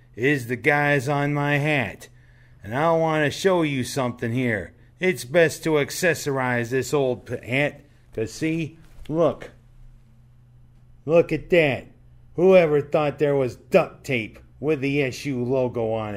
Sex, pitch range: male, 125-150 Hz